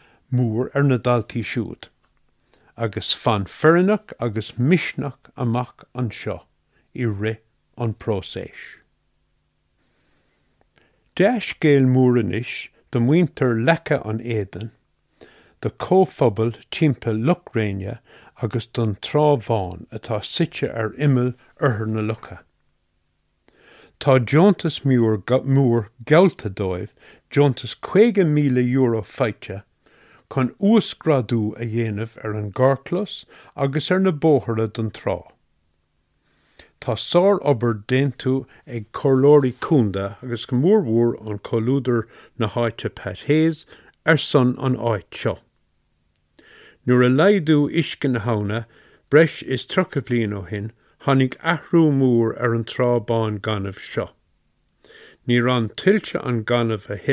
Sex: male